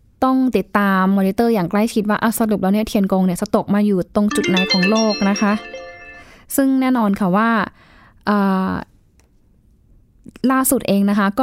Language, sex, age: Thai, female, 10-29